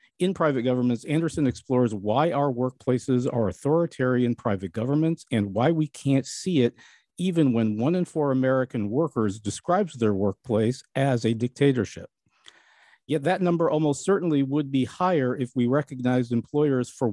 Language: English